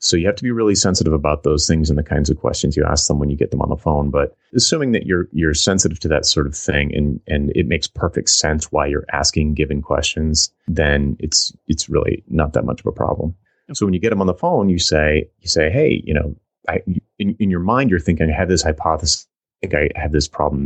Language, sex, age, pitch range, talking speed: English, male, 30-49, 75-85 Hz, 260 wpm